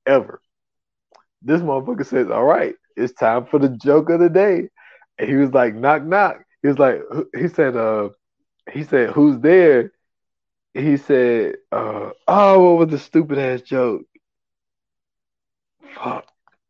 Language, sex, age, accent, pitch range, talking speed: English, male, 20-39, American, 125-185 Hz, 145 wpm